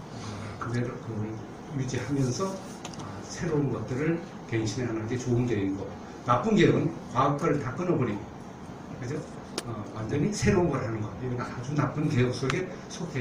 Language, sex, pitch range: Korean, male, 115-155 Hz